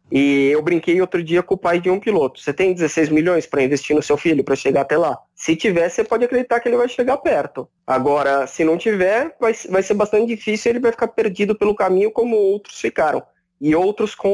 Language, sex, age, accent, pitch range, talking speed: Portuguese, male, 20-39, Brazilian, 160-200 Hz, 235 wpm